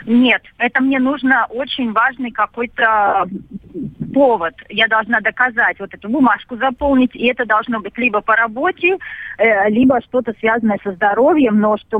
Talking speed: 145 wpm